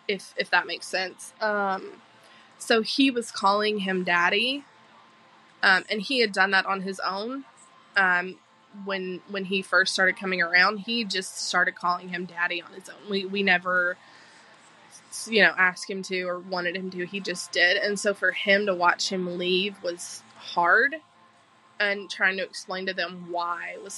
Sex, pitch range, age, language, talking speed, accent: female, 185-210 Hz, 20-39, English, 180 wpm, American